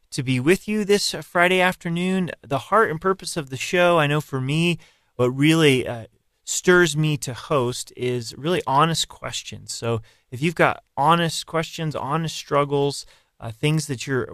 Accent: American